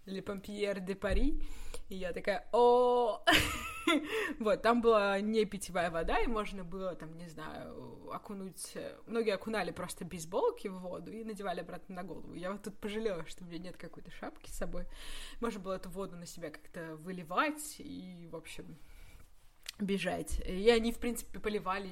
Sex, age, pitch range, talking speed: female, 20-39, 180-225 Hz, 165 wpm